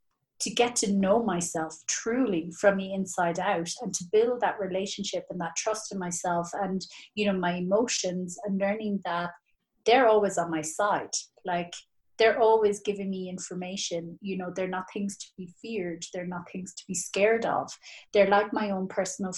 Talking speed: 185 wpm